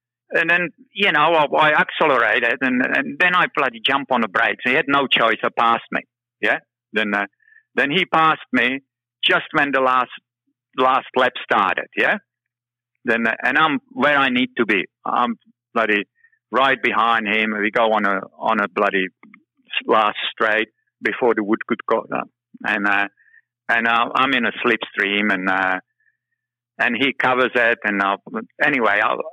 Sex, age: male, 50-69